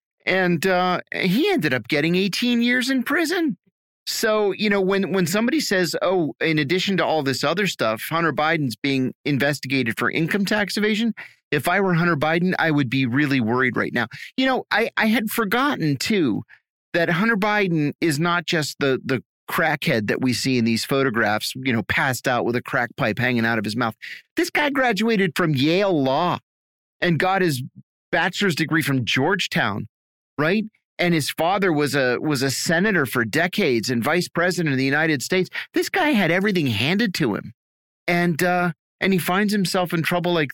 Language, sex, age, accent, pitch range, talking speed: English, male, 30-49, American, 130-190 Hz, 190 wpm